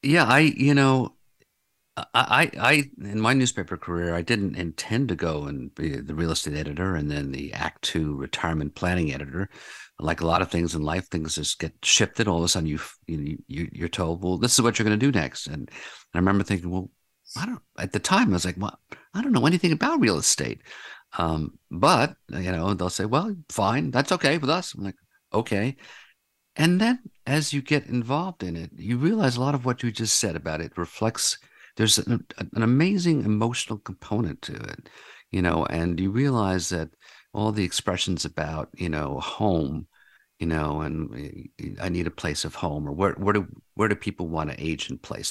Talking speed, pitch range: 205 wpm, 85-125 Hz